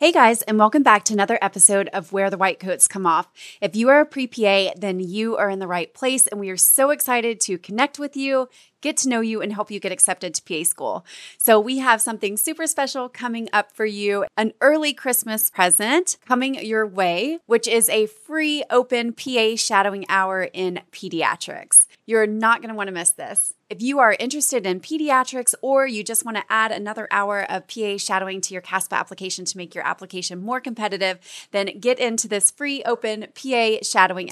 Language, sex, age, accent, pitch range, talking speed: English, female, 20-39, American, 195-245 Hz, 205 wpm